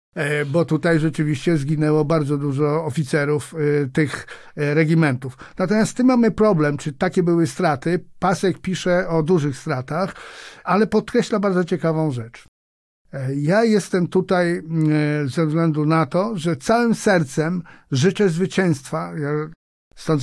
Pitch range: 155-180 Hz